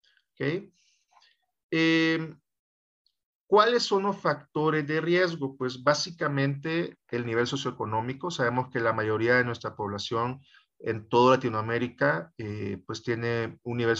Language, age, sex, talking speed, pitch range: Spanish, 40-59, male, 120 wpm, 115-150 Hz